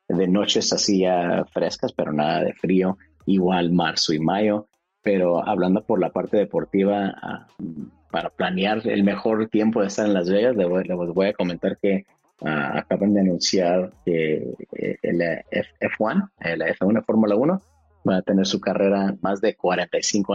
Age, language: 30-49, Spanish